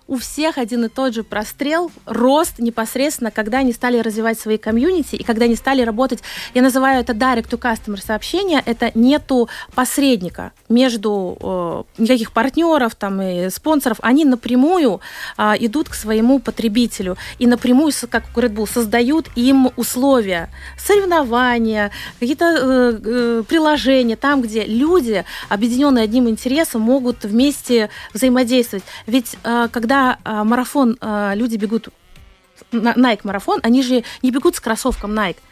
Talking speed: 135 wpm